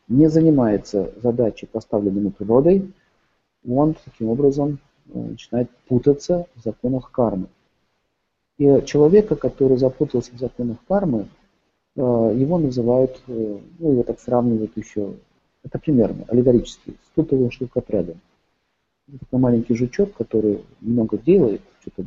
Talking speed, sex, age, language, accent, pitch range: 110 wpm, male, 50-69, Russian, native, 120-150 Hz